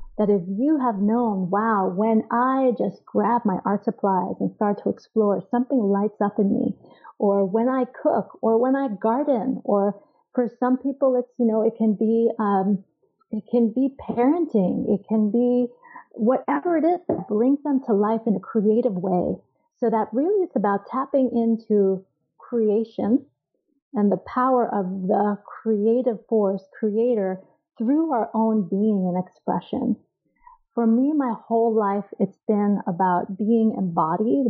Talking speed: 160 wpm